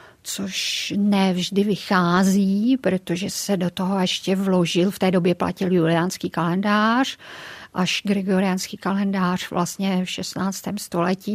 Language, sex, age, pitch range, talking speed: Czech, female, 50-69, 185-205 Hz, 115 wpm